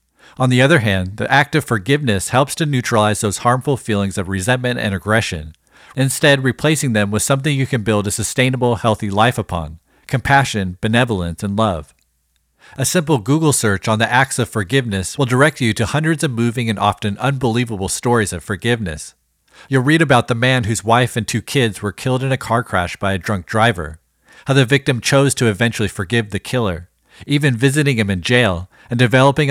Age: 40-59